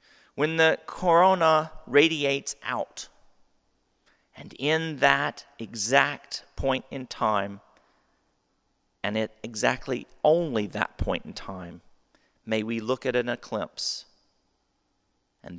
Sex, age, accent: male, 40-59, American